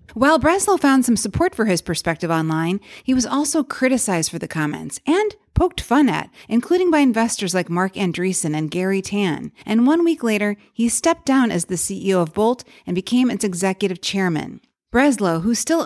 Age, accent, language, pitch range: 30-49, American, English, 180-245 Hz